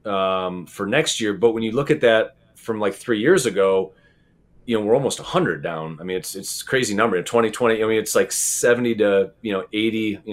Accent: American